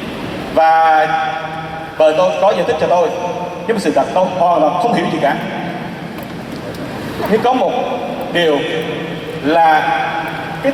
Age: 30-49